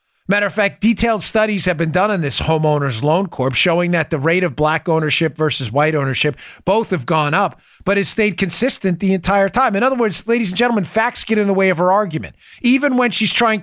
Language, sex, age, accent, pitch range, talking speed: English, male, 40-59, American, 165-220 Hz, 230 wpm